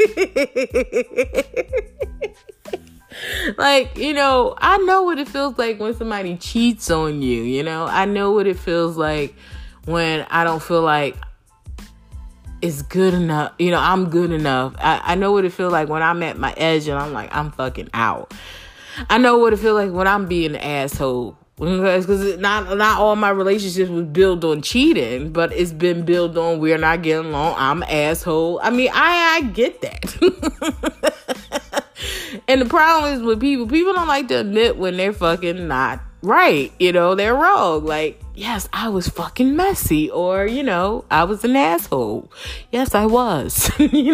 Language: English